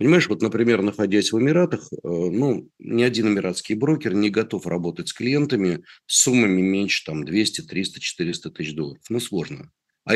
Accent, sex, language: native, male, Russian